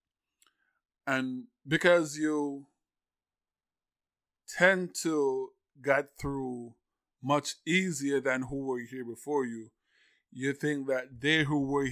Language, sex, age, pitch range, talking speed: English, male, 20-39, 120-145 Hz, 105 wpm